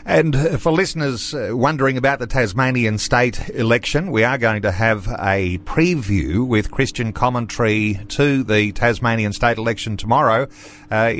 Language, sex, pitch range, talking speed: English, male, 110-135 Hz, 140 wpm